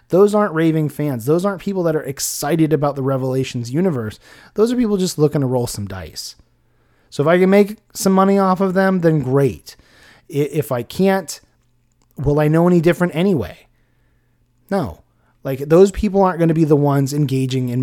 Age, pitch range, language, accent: 30-49, 125-170 Hz, English, American